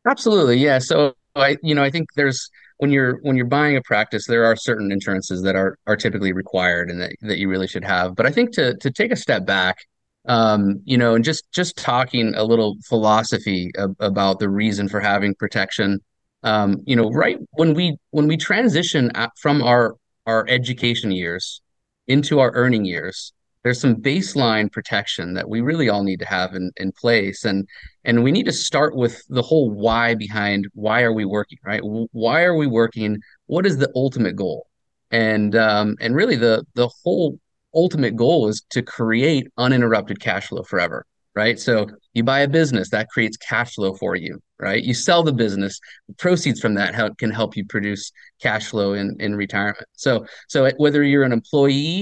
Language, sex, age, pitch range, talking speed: English, male, 30-49, 105-135 Hz, 190 wpm